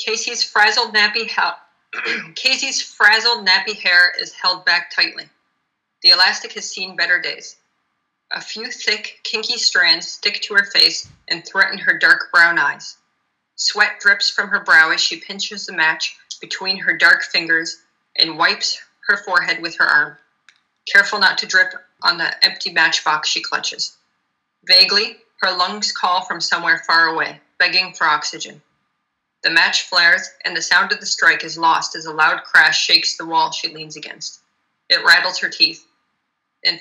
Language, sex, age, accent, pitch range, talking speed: English, female, 30-49, American, 175-215 Hz, 160 wpm